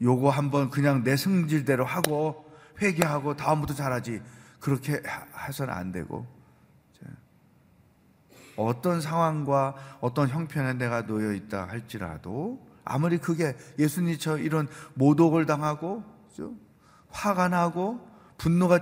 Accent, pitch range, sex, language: native, 115-160 Hz, male, Korean